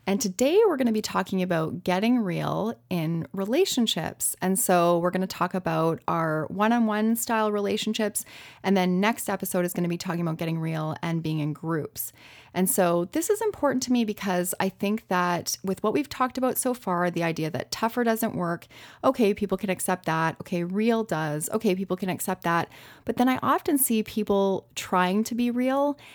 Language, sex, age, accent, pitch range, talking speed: English, female, 30-49, American, 180-235 Hz, 195 wpm